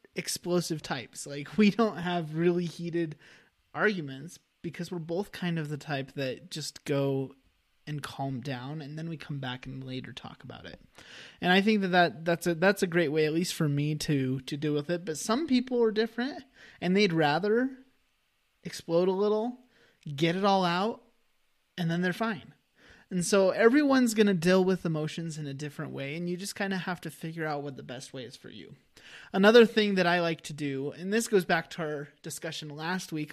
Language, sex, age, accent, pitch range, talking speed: English, male, 20-39, American, 145-185 Hz, 205 wpm